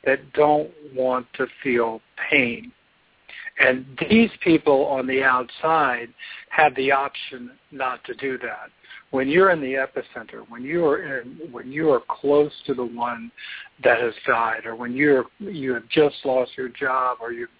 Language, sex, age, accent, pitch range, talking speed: English, male, 60-79, American, 125-150 Hz, 160 wpm